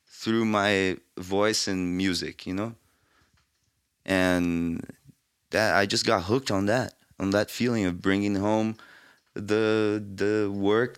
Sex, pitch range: male, 90-105 Hz